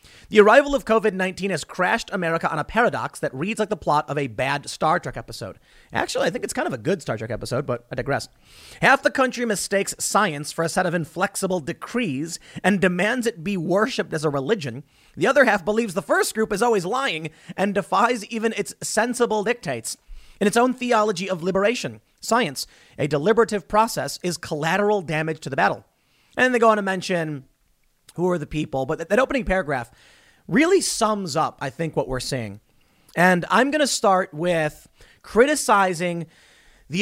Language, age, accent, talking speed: English, 30-49, American, 190 wpm